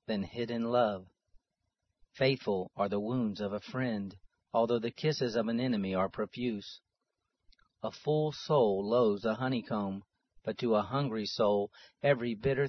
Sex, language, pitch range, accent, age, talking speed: male, English, 105-130 Hz, American, 40-59, 145 wpm